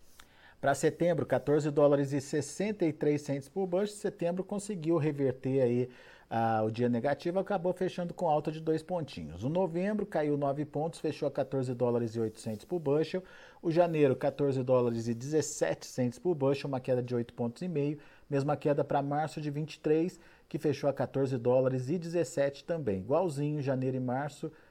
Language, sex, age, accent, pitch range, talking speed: Portuguese, male, 50-69, Brazilian, 125-165 Hz, 175 wpm